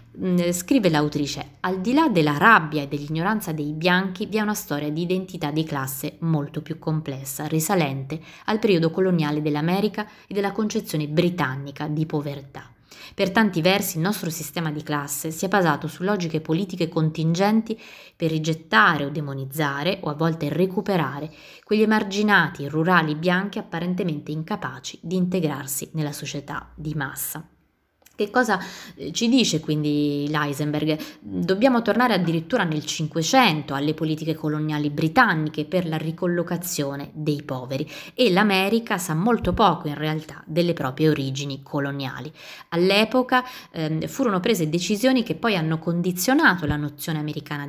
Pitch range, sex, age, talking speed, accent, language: 150-190 Hz, female, 20-39, 140 wpm, native, Italian